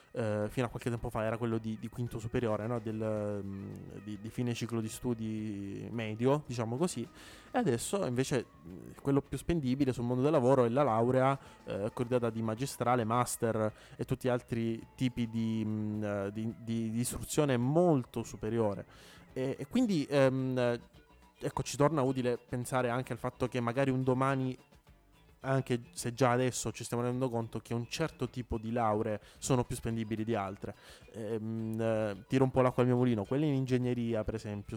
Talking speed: 175 wpm